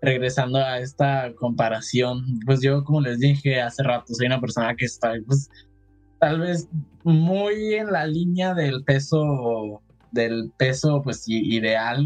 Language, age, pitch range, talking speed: Spanish, 10-29, 120-145 Hz, 145 wpm